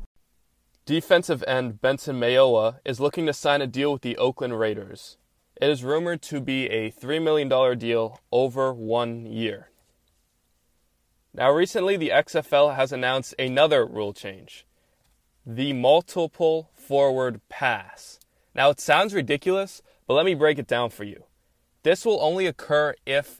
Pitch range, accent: 115-150 Hz, American